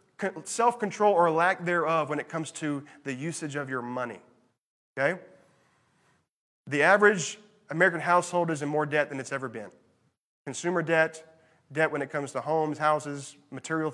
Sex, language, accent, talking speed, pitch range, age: male, English, American, 155 wpm, 150-175 Hz, 30-49